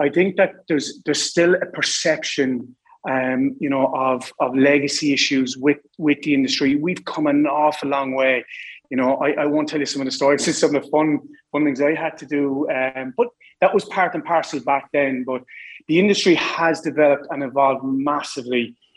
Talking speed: 200 wpm